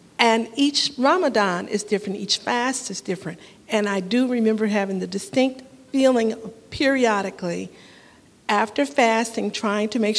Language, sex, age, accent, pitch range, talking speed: English, female, 50-69, American, 200-255 Hz, 135 wpm